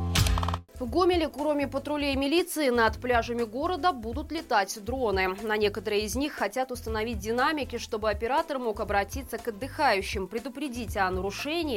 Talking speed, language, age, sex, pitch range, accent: 140 wpm, Russian, 20-39, female, 210-270 Hz, native